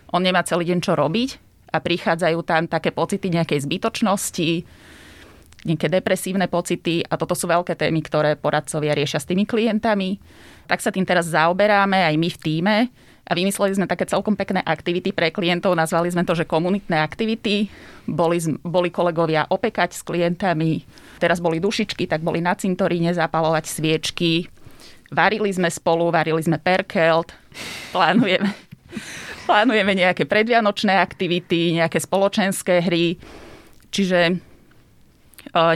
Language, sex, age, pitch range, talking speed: Slovak, female, 20-39, 160-190 Hz, 140 wpm